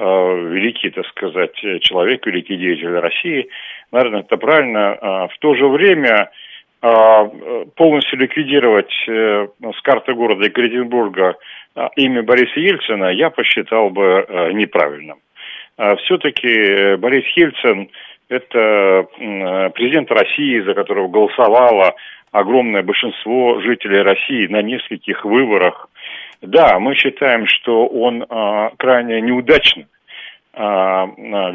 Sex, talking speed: male, 100 wpm